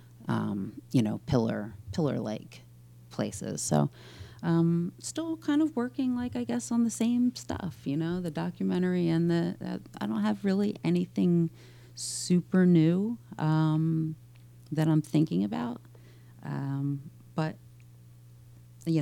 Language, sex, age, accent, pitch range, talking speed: English, female, 40-59, American, 115-155 Hz, 135 wpm